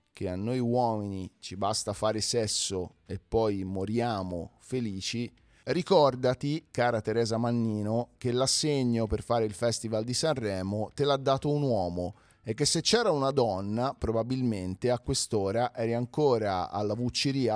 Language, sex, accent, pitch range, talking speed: Italian, male, native, 100-135 Hz, 145 wpm